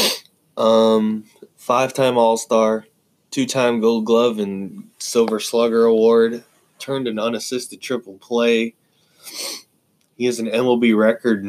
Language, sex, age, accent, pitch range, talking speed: English, male, 20-39, American, 110-125 Hz, 105 wpm